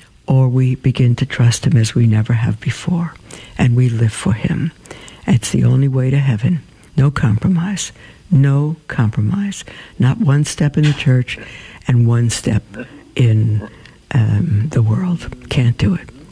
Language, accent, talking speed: English, American, 155 wpm